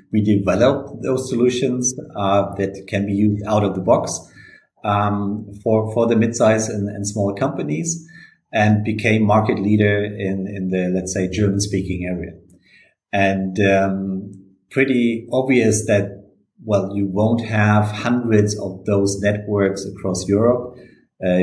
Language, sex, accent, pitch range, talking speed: English, male, German, 95-105 Hz, 135 wpm